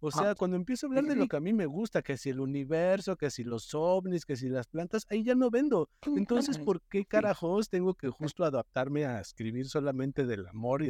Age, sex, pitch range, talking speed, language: 50-69, male, 130-170 Hz, 235 wpm, Spanish